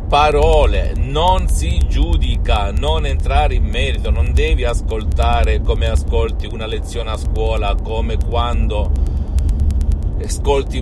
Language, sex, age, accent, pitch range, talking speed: Italian, male, 50-69, native, 70-80 Hz, 110 wpm